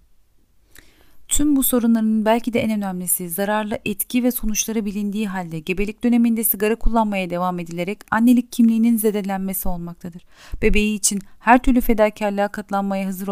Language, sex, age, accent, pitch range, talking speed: Turkish, female, 40-59, native, 190-230 Hz, 135 wpm